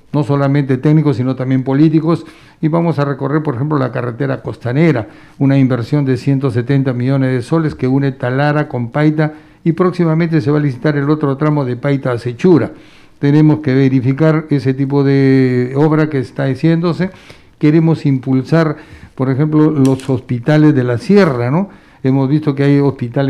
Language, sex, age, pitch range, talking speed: Spanish, male, 60-79, 130-155 Hz, 160 wpm